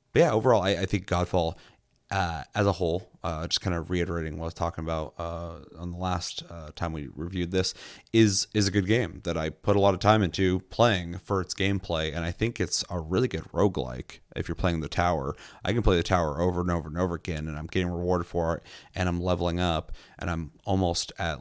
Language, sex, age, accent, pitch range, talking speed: English, male, 30-49, American, 85-95 Hz, 240 wpm